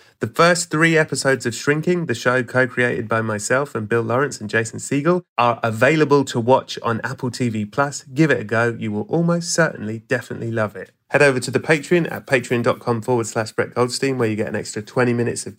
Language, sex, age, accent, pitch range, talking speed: English, male, 30-49, British, 110-135 Hz, 210 wpm